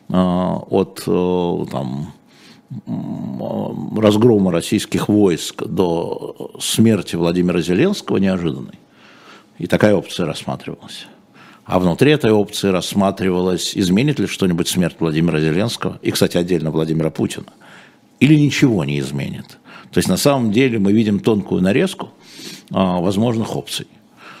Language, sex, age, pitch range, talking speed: Russian, male, 60-79, 90-110 Hz, 110 wpm